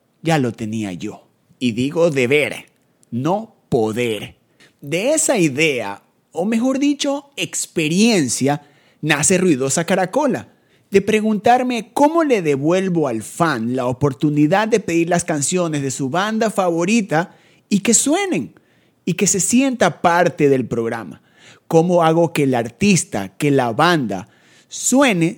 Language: Spanish